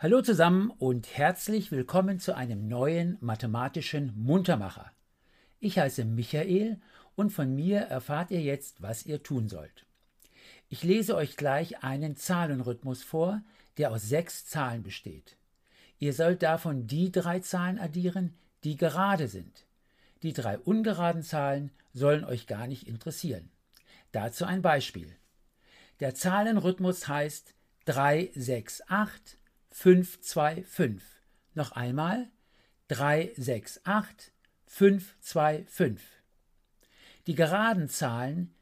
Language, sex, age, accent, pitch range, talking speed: German, male, 60-79, German, 130-180 Hz, 115 wpm